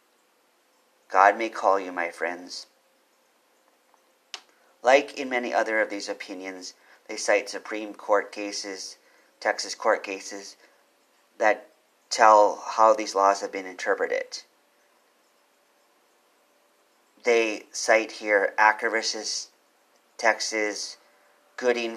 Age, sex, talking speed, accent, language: 40-59, male, 100 wpm, American, English